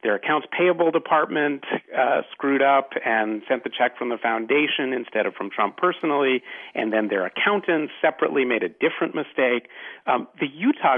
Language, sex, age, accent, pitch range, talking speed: English, male, 40-59, American, 105-140 Hz, 170 wpm